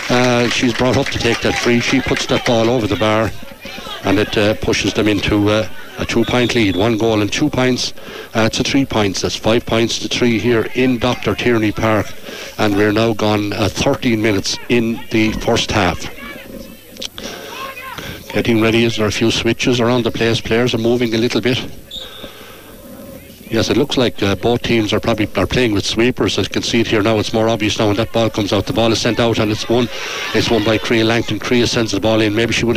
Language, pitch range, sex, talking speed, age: English, 110-125 Hz, male, 220 wpm, 60-79